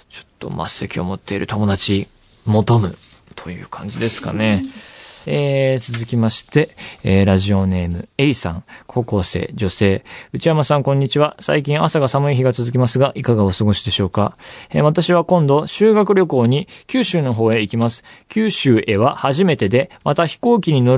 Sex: male